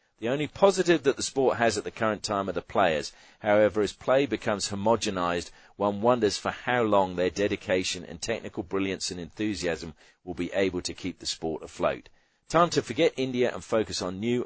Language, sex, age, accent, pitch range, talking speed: English, male, 40-59, British, 90-110 Hz, 195 wpm